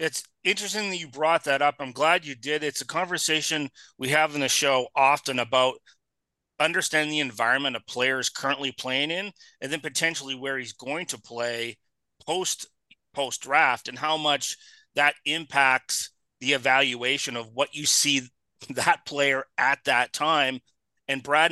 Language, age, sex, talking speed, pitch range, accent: English, 30-49, male, 165 wpm, 125-150 Hz, American